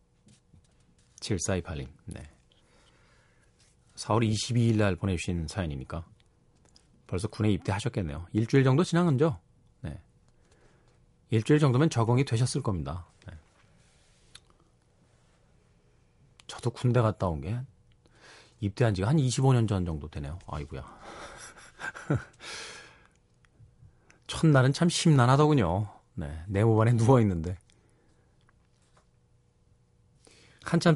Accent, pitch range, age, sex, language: native, 90-125 Hz, 40-59, male, Korean